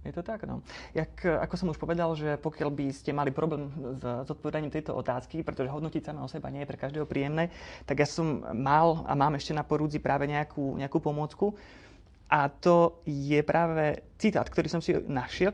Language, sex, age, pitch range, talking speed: Slovak, male, 30-49, 130-165 Hz, 195 wpm